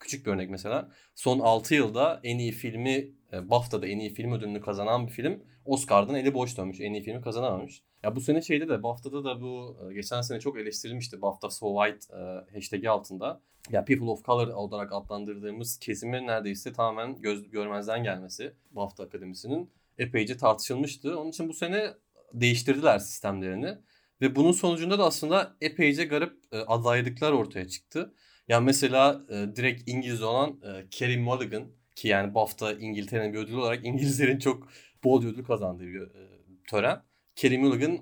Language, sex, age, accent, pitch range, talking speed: Turkish, male, 30-49, native, 105-135 Hz, 165 wpm